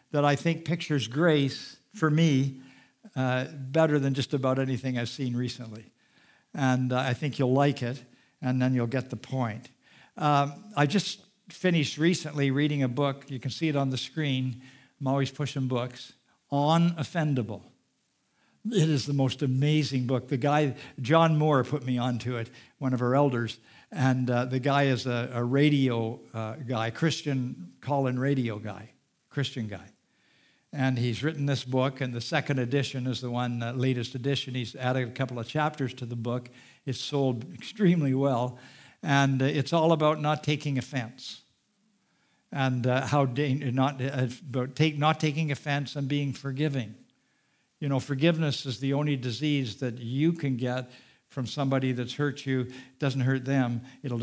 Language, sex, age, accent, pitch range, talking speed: English, male, 60-79, American, 125-145 Hz, 170 wpm